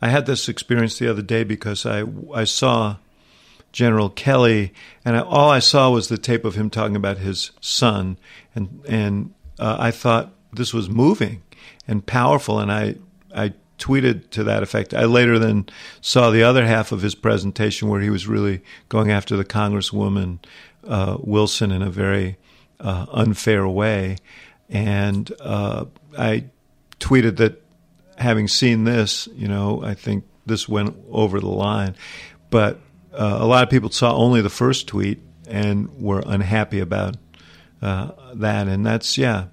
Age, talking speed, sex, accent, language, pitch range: 50-69, 160 wpm, male, American, English, 100-115 Hz